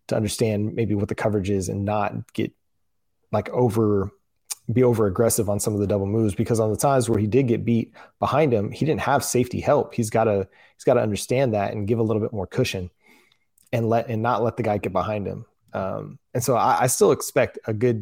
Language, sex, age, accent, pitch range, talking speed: English, male, 20-39, American, 105-115 Hz, 235 wpm